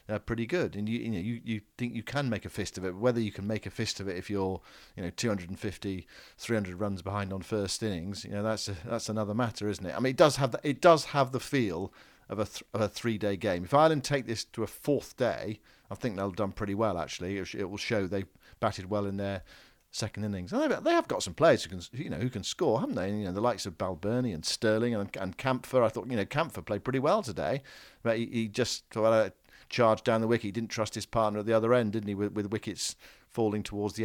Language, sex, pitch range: English, male, 100-115 Hz